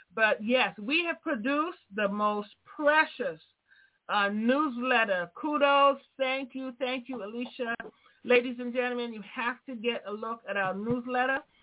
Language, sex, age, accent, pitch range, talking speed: English, female, 40-59, American, 220-275 Hz, 145 wpm